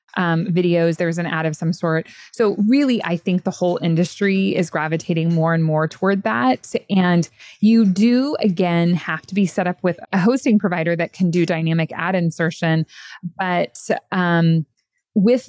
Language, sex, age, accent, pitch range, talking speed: English, female, 20-39, American, 160-190 Hz, 170 wpm